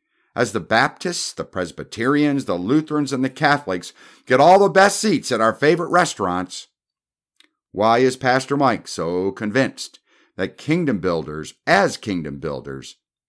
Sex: male